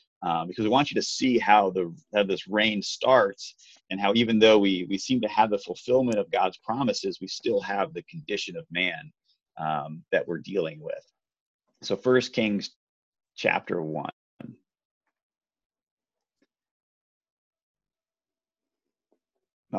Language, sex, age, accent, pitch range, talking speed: English, male, 30-49, American, 95-125 Hz, 135 wpm